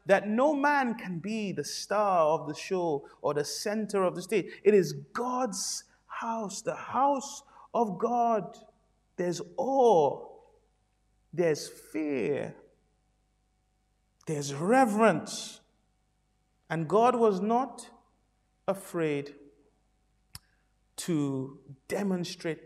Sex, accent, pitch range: male, Nigerian, 140-210 Hz